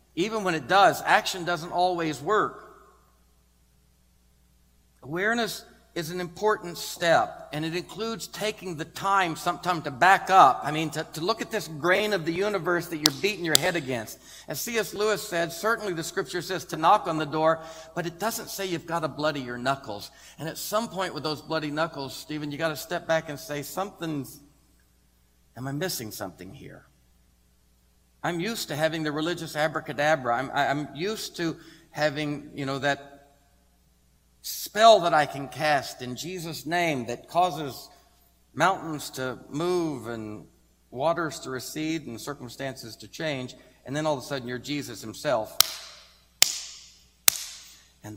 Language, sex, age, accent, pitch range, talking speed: English, male, 50-69, American, 115-175 Hz, 165 wpm